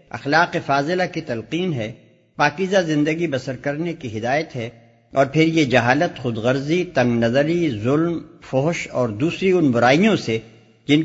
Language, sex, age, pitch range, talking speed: Urdu, male, 60-79, 130-180 Hz, 150 wpm